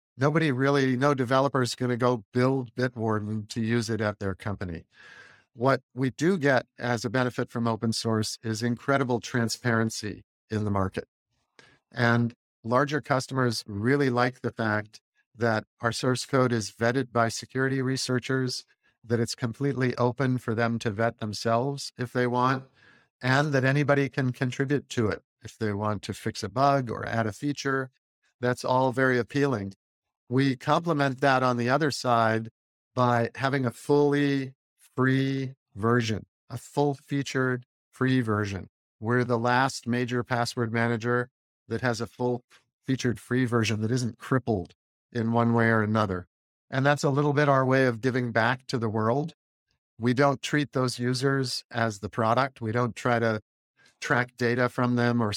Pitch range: 115-135 Hz